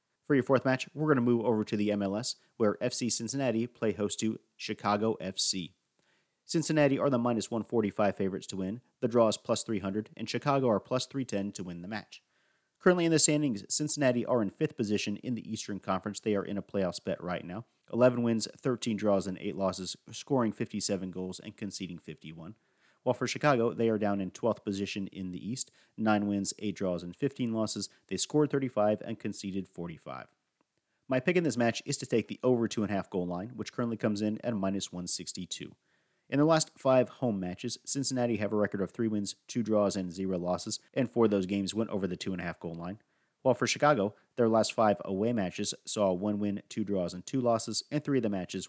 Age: 40-59